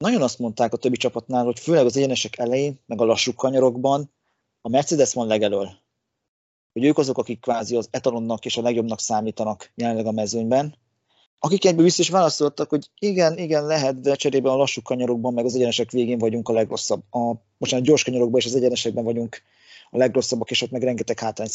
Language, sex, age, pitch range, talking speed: Hungarian, male, 30-49, 115-145 Hz, 190 wpm